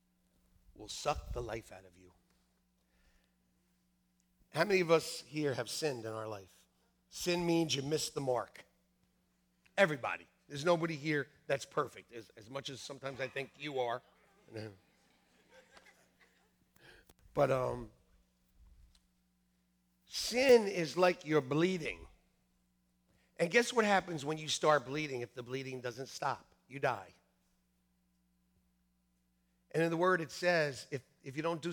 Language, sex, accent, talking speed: English, male, American, 135 wpm